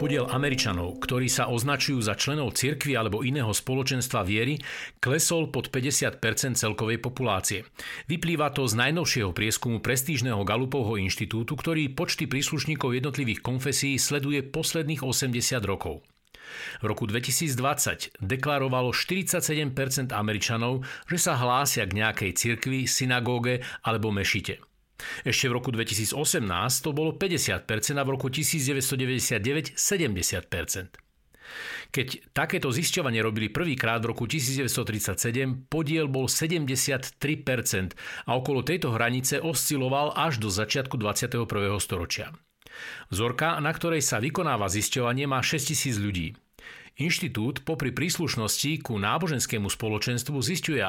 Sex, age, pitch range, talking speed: male, 50-69, 115-150 Hz, 115 wpm